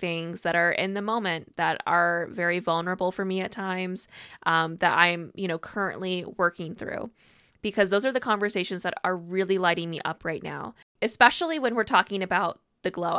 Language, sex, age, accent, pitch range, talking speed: English, female, 20-39, American, 180-210 Hz, 190 wpm